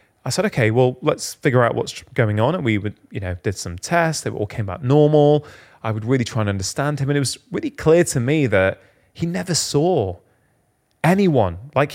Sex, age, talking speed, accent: male, 30-49, 215 wpm, British